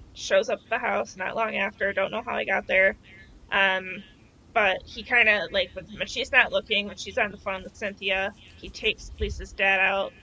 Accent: American